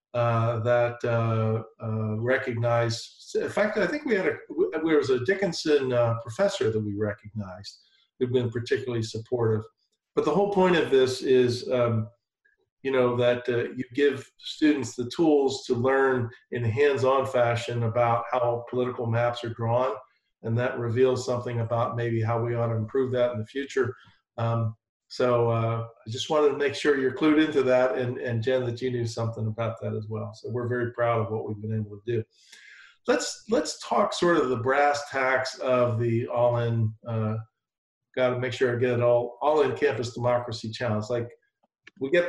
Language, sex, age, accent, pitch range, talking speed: English, male, 50-69, American, 115-140 Hz, 185 wpm